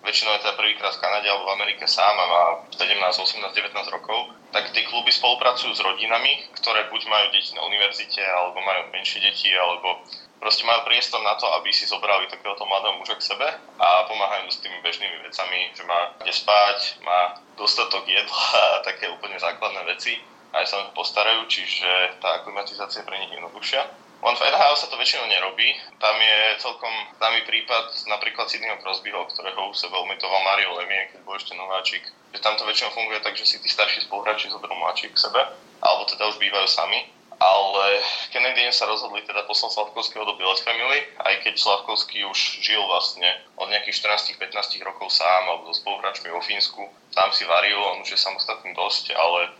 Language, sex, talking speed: Slovak, male, 185 wpm